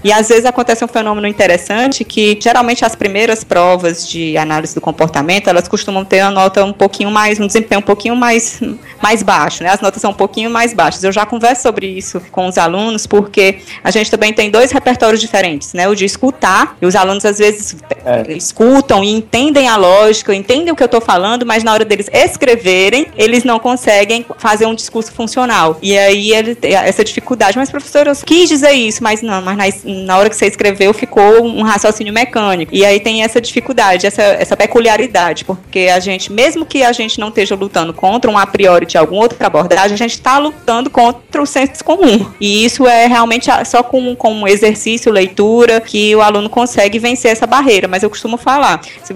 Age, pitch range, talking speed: 20-39, 195-235 Hz, 205 wpm